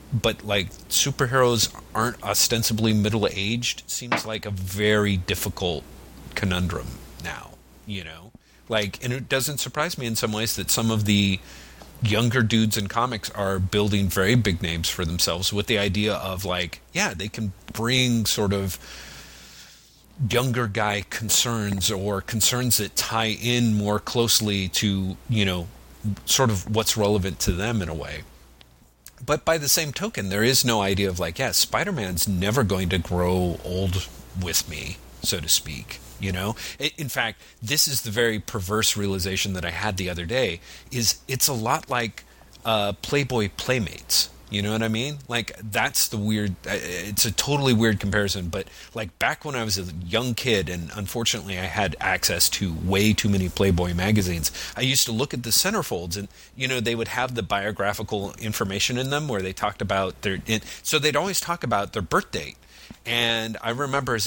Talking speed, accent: 175 wpm, American